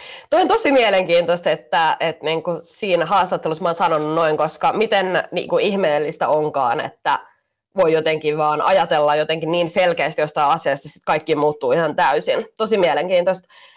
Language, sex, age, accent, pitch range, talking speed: Finnish, female, 20-39, native, 150-185 Hz, 165 wpm